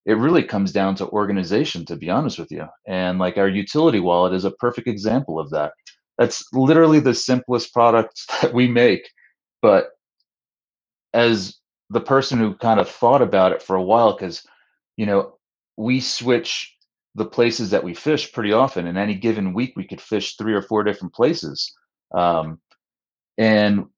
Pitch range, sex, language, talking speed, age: 95-115 Hz, male, English, 175 wpm, 30-49